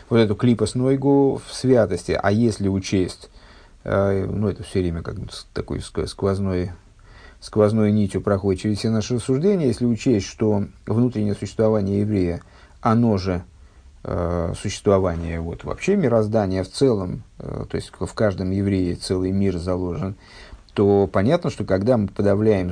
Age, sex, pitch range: 50-69, male, 95-125 Hz